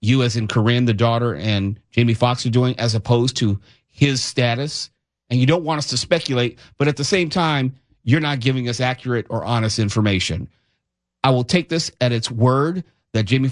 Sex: male